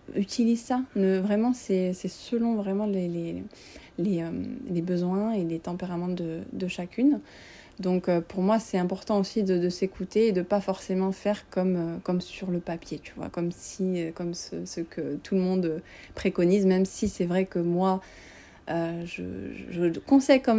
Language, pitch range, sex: French, 175-200 Hz, female